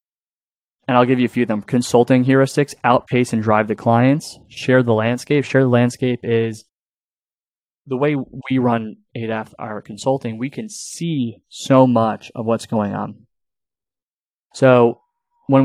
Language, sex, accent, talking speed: English, male, American, 155 wpm